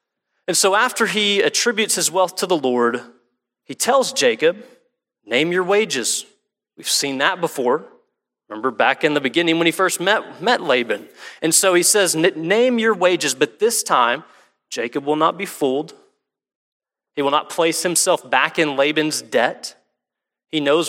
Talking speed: 165 wpm